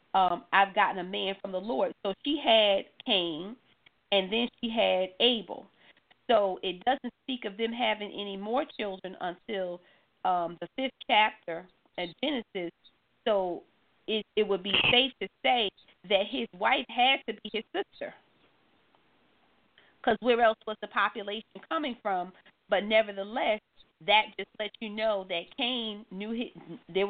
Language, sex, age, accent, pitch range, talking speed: English, female, 40-59, American, 190-235 Hz, 155 wpm